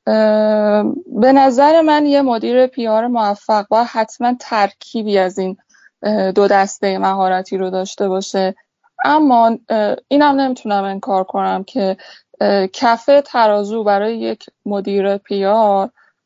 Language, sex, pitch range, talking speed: Persian, female, 200-245 Hz, 110 wpm